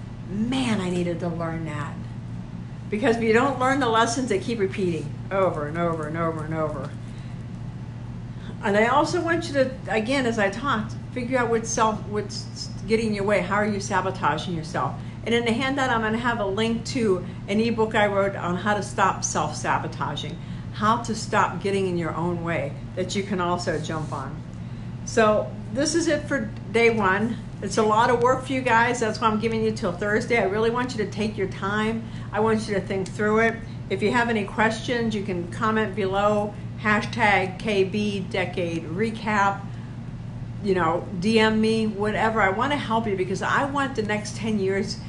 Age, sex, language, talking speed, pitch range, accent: 60-79, female, English, 195 wpm, 175-225 Hz, American